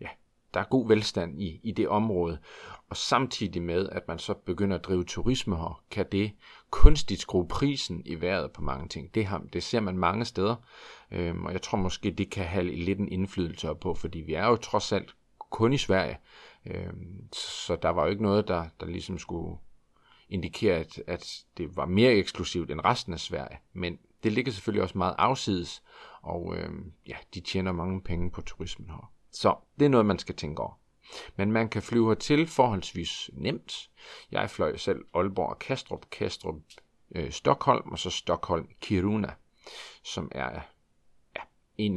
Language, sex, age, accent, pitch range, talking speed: Danish, male, 40-59, native, 85-105 Hz, 185 wpm